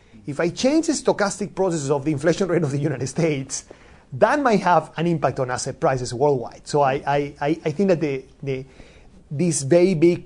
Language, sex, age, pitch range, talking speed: English, male, 30-49, 135-180 Hz, 200 wpm